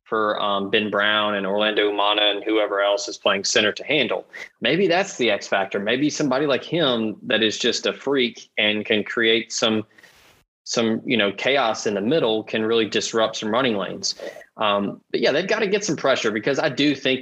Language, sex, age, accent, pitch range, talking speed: English, male, 20-39, American, 105-125 Hz, 205 wpm